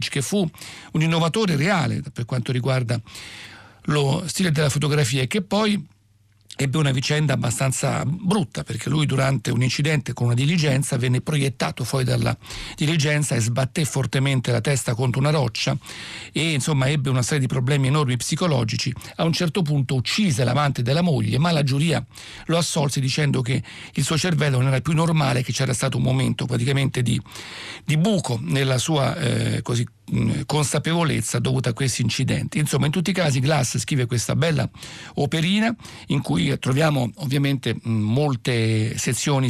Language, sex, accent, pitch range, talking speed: English, male, Italian, 125-155 Hz, 160 wpm